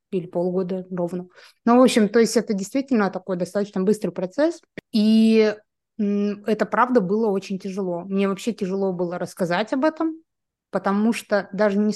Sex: female